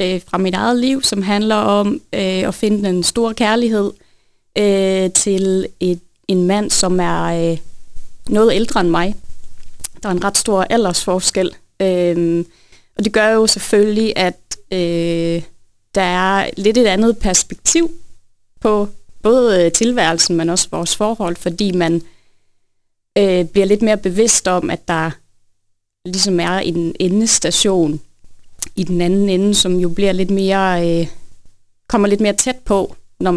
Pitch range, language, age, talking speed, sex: 170-205 Hz, Danish, 30-49, 145 wpm, female